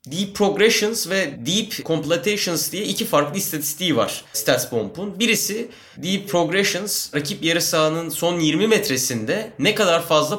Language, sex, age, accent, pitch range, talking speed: Turkish, male, 30-49, native, 150-220 Hz, 135 wpm